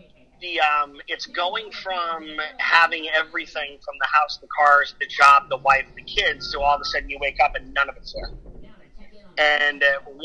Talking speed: 195 wpm